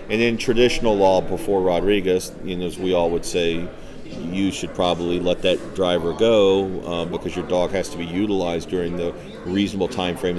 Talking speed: 180 wpm